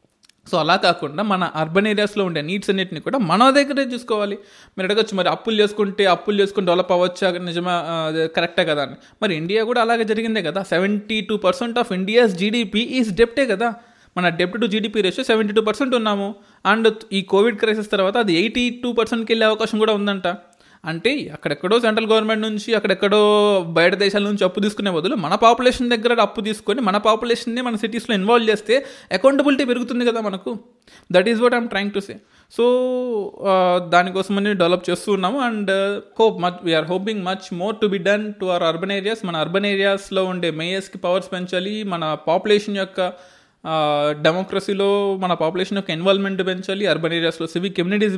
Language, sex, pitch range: Telugu, male, 180-225 Hz